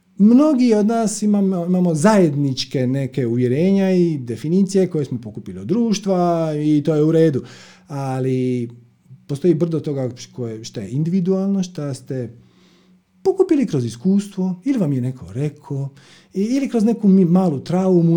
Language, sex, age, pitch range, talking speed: Croatian, male, 40-59, 120-190 Hz, 140 wpm